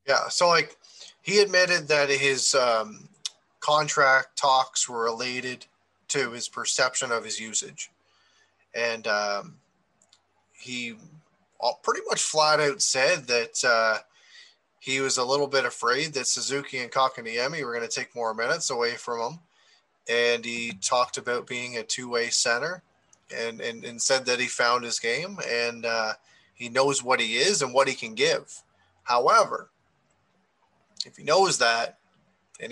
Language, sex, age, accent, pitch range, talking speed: English, male, 20-39, American, 115-140 Hz, 150 wpm